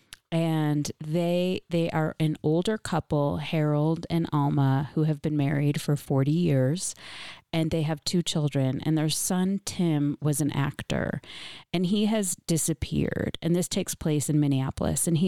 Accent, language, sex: American, English, female